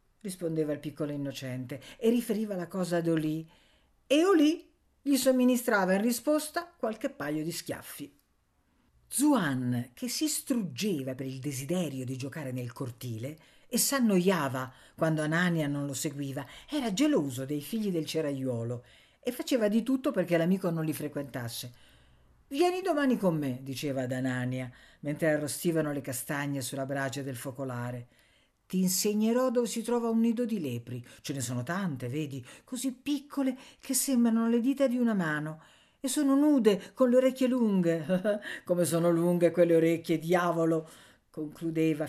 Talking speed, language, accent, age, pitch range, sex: 150 wpm, Italian, native, 50-69, 135-230 Hz, female